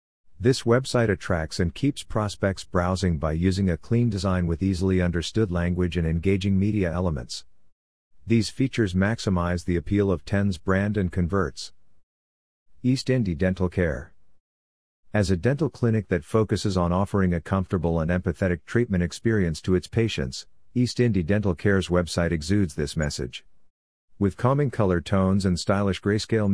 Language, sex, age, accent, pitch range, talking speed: English, male, 50-69, American, 85-100 Hz, 150 wpm